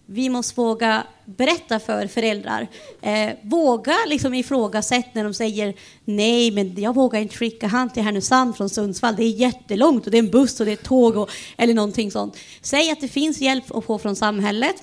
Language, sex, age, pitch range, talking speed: Swedish, female, 30-49, 220-270 Hz, 200 wpm